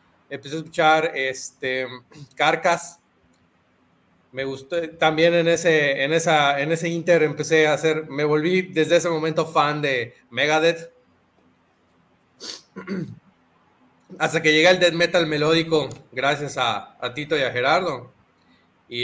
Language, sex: Spanish, male